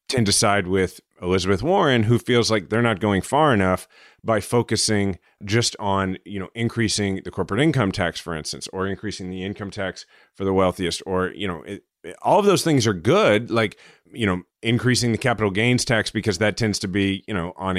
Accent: American